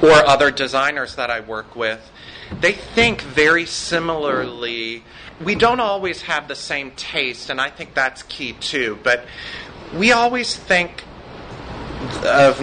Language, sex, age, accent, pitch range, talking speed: English, male, 30-49, American, 115-145 Hz, 140 wpm